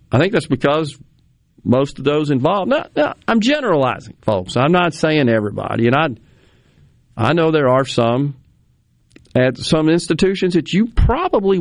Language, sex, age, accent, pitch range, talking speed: English, male, 50-69, American, 105-145 Hz, 155 wpm